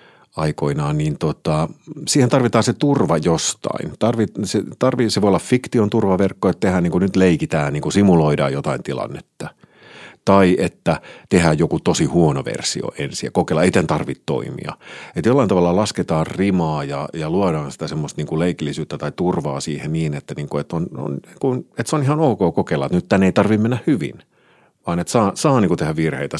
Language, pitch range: Finnish, 80-110 Hz